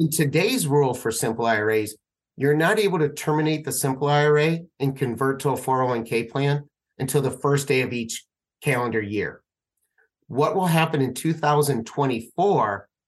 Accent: American